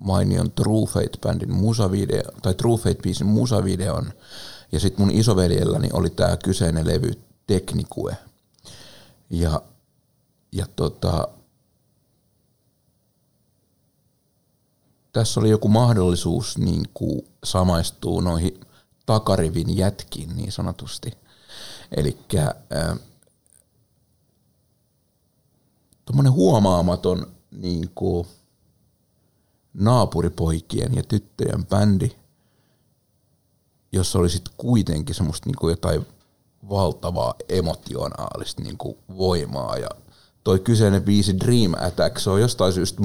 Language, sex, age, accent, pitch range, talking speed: Finnish, male, 50-69, native, 90-115 Hz, 85 wpm